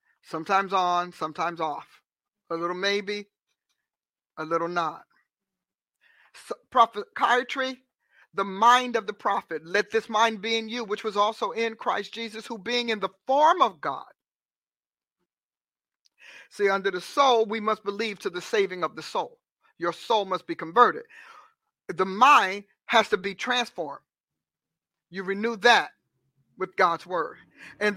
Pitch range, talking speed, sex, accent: 175-230 Hz, 140 wpm, male, American